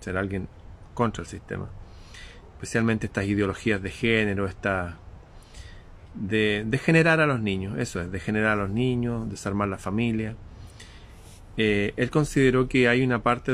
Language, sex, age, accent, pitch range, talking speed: Spanish, male, 30-49, Argentinian, 95-120 Hz, 150 wpm